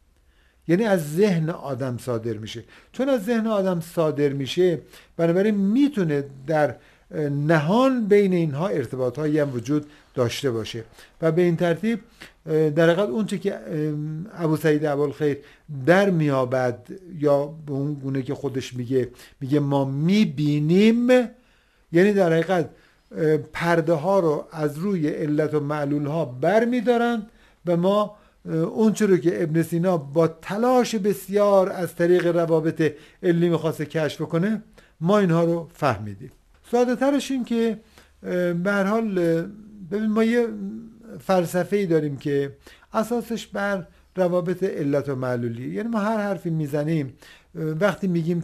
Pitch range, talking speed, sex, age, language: 145-200 Hz, 130 wpm, male, 50-69, Persian